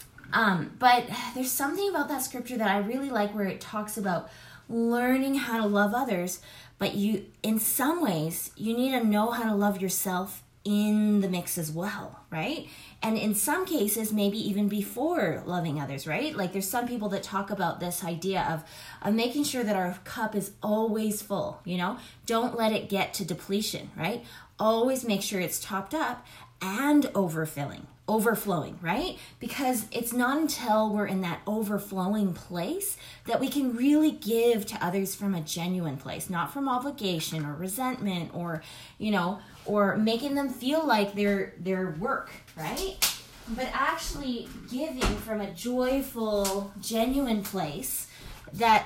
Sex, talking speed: female, 165 wpm